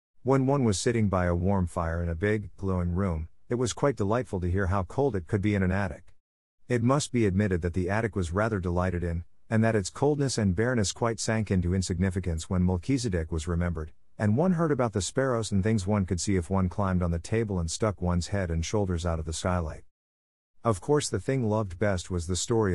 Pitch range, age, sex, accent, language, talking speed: 90-115 Hz, 50-69, male, American, English, 230 wpm